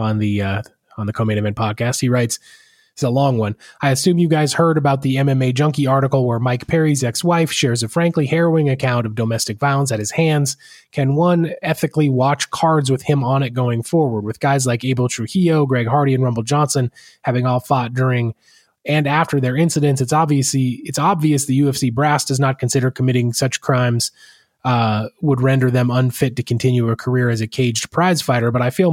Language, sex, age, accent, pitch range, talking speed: English, male, 20-39, American, 125-145 Hz, 200 wpm